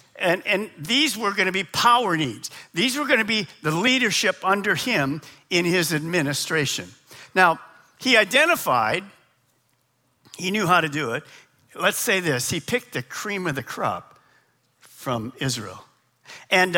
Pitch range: 140-205 Hz